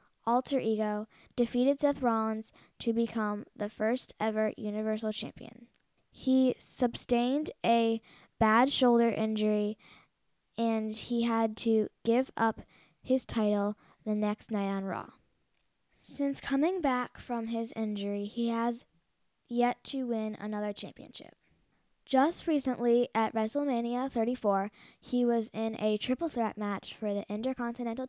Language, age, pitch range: English, 10-29, 215-240 Hz